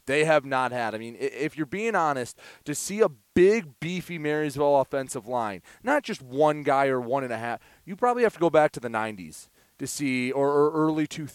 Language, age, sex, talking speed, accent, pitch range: English, 30-49, male, 210 wpm, American, 125-165 Hz